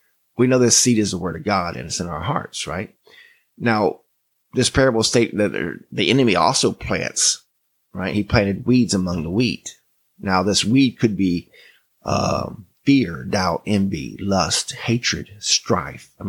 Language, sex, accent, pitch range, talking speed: English, male, American, 95-120 Hz, 160 wpm